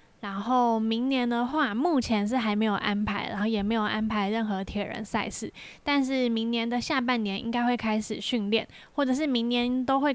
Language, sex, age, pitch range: Chinese, female, 10-29, 215-250 Hz